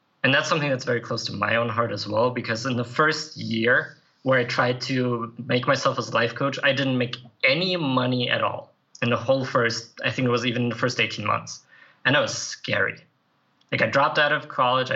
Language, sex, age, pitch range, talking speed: English, male, 20-39, 115-140 Hz, 230 wpm